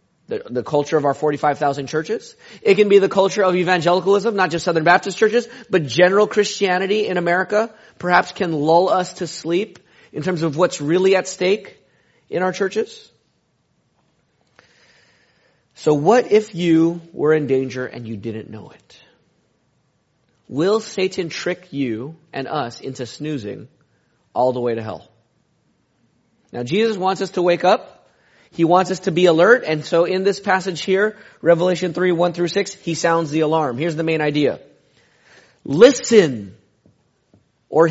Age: 30-49